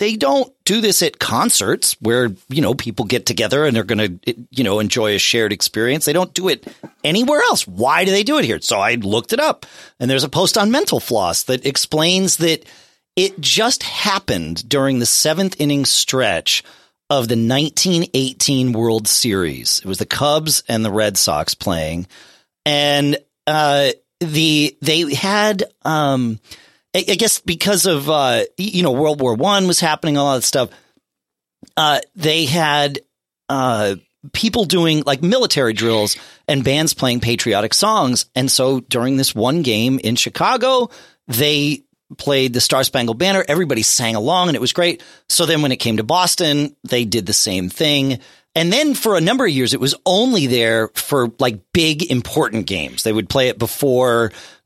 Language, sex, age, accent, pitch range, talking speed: English, male, 40-59, American, 120-170 Hz, 175 wpm